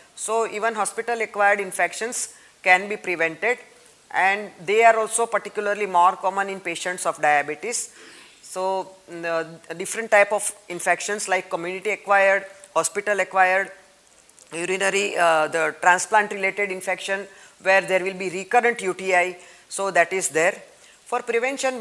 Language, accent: English, Indian